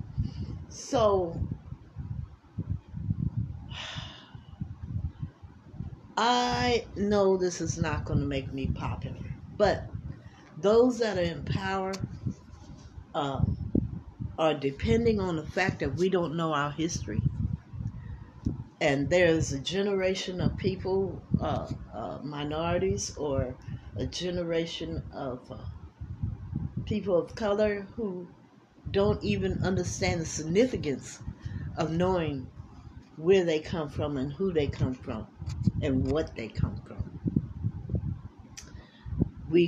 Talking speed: 105 wpm